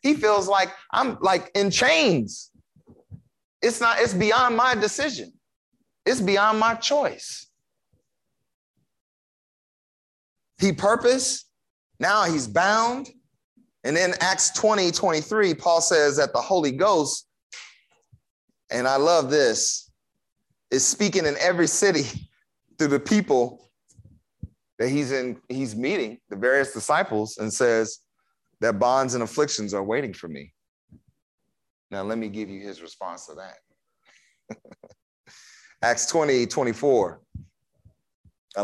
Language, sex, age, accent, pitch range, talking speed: English, male, 30-49, American, 130-205 Hz, 115 wpm